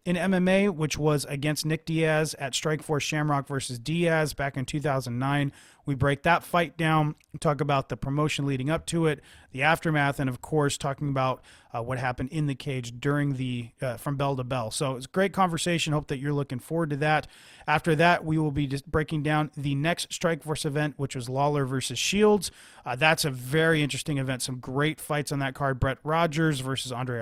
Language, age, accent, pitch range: English, 30-49, American, 135-165 Hz